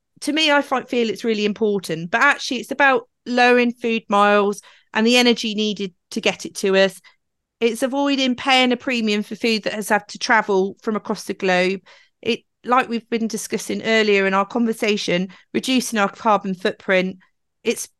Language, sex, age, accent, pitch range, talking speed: English, female, 40-59, British, 190-245 Hz, 175 wpm